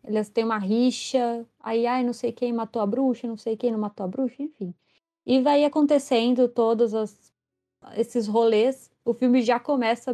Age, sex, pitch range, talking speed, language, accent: 20-39, female, 220-260 Hz, 185 wpm, Portuguese, Brazilian